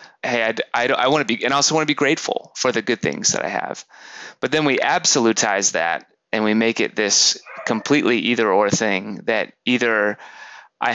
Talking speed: 210 wpm